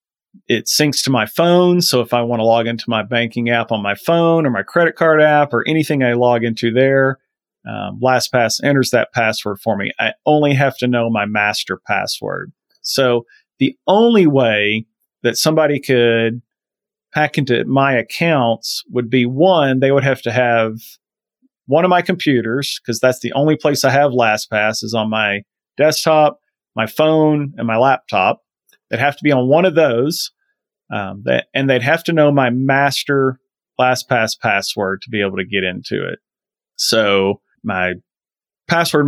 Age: 40-59